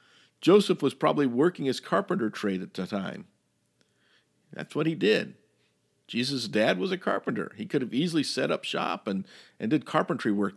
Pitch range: 100-150 Hz